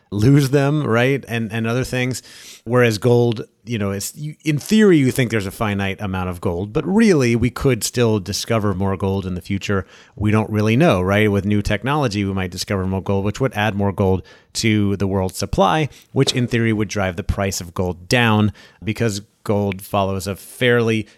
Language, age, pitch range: English, 30-49, 100-120 Hz